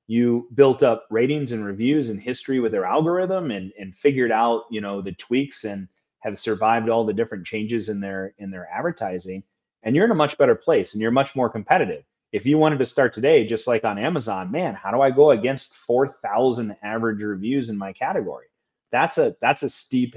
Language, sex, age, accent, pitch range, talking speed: English, male, 30-49, American, 100-130 Hz, 210 wpm